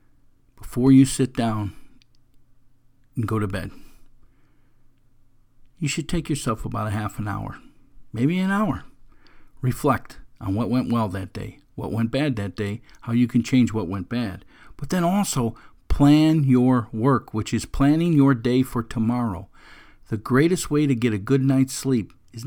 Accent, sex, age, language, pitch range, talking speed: American, male, 50-69, English, 110-140 Hz, 165 wpm